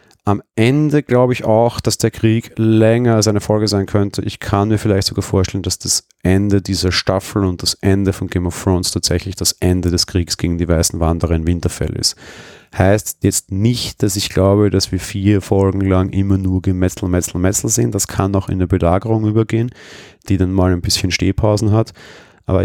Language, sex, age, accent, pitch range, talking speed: German, male, 30-49, German, 85-105 Hz, 200 wpm